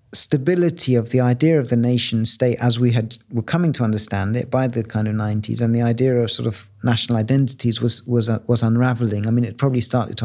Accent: British